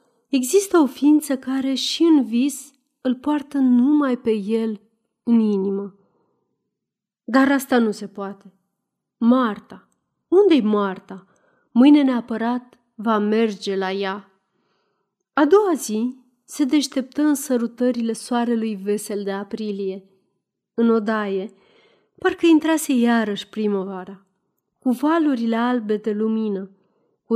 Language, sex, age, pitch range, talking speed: Romanian, female, 30-49, 205-265 Hz, 115 wpm